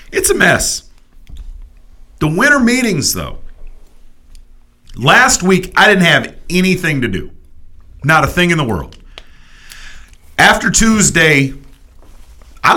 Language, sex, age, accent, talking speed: English, male, 40-59, American, 115 wpm